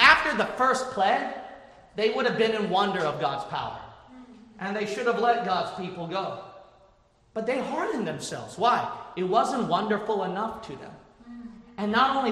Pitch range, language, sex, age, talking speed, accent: 190-245 Hz, English, male, 40-59, 170 wpm, American